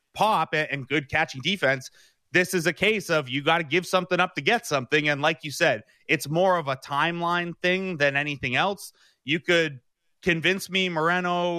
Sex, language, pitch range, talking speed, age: male, English, 130-170 Hz, 190 wpm, 30-49